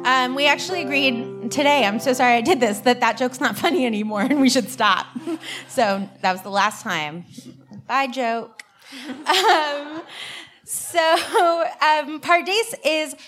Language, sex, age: English, female, 20-39